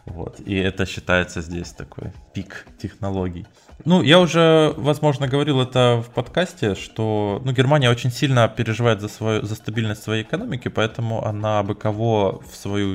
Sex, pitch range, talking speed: male, 95-110 Hz, 160 wpm